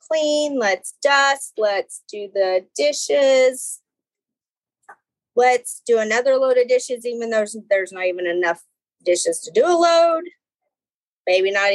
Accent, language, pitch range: American, English, 230-335 Hz